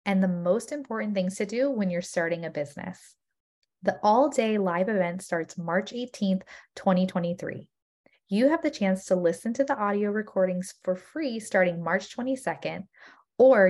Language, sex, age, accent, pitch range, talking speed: English, female, 20-39, American, 180-220 Hz, 160 wpm